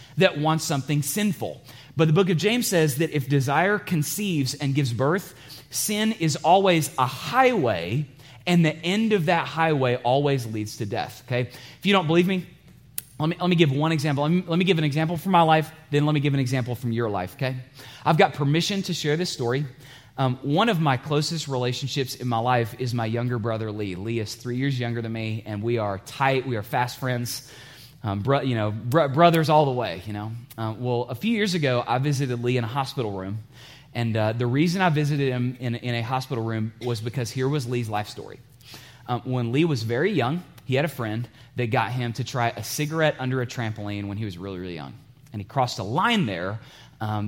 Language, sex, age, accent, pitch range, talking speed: English, male, 30-49, American, 120-150 Hz, 225 wpm